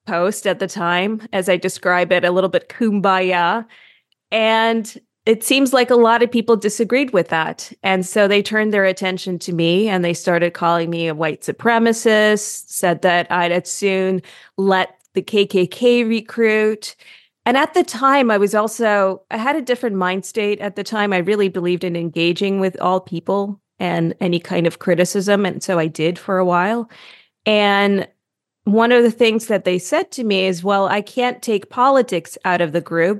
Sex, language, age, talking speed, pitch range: female, English, 30-49, 185 wpm, 180-215 Hz